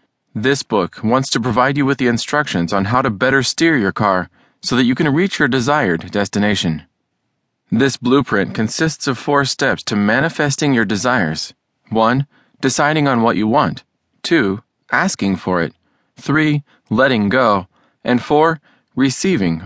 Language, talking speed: English, 155 wpm